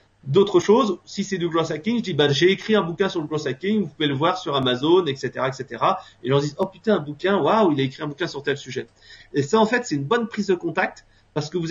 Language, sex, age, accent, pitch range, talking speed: French, male, 30-49, French, 140-185 Hz, 275 wpm